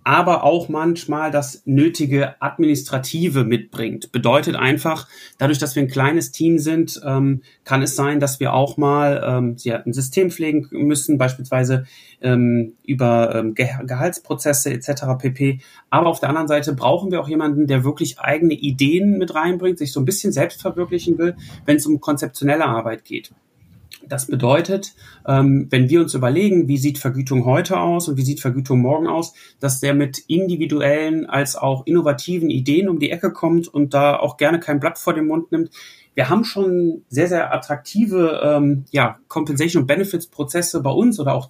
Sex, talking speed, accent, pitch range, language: male, 160 wpm, German, 135-165 Hz, German